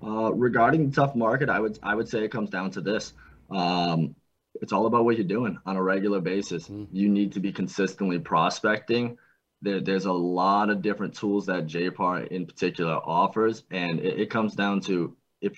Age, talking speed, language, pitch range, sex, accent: 20-39, 195 wpm, English, 85-100 Hz, male, American